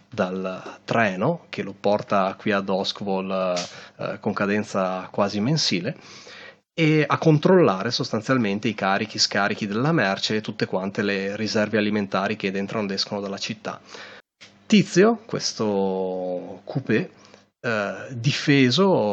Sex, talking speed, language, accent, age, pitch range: male, 120 wpm, Italian, native, 30-49, 100-130 Hz